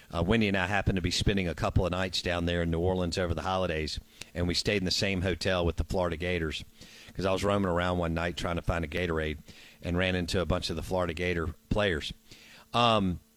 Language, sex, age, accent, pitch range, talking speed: English, male, 50-69, American, 90-110 Hz, 240 wpm